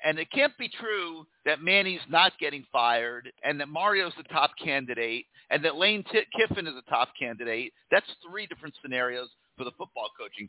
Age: 50-69